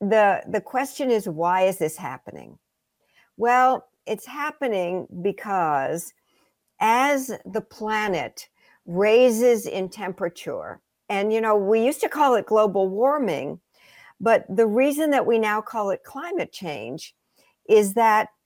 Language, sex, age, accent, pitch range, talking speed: English, female, 60-79, American, 190-265 Hz, 130 wpm